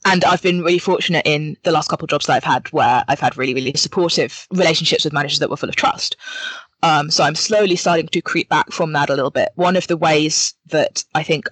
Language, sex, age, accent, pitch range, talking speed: English, female, 20-39, British, 150-175 Hz, 250 wpm